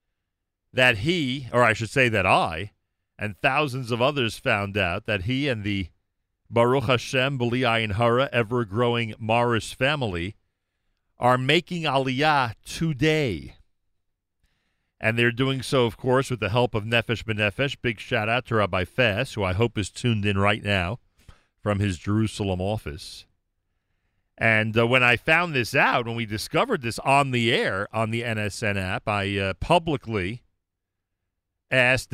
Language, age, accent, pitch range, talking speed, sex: English, 40-59, American, 100-130 Hz, 150 wpm, male